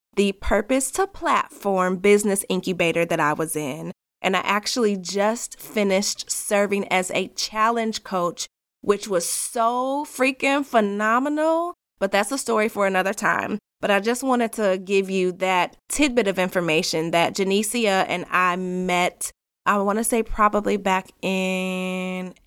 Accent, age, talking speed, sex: American, 20-39, 140 wpm, female